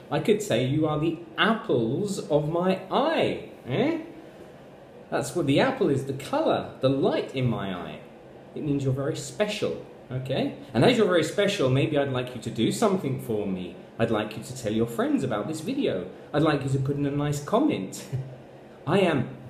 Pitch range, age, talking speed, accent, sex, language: 130-175 Hz, 30-49, 195 wpm, British, male, Italian